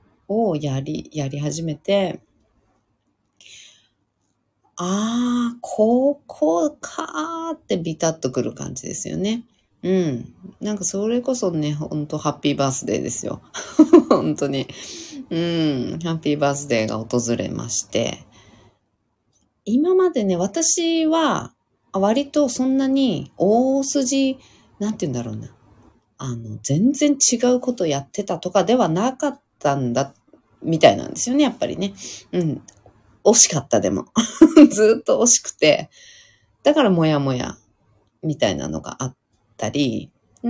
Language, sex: Japanese, female